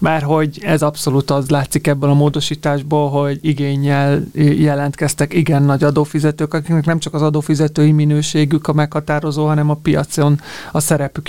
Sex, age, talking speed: male, 30-49, 150 wpm